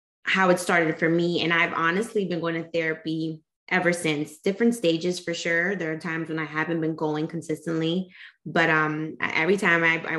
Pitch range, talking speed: 155-190 Hz, 195 wpm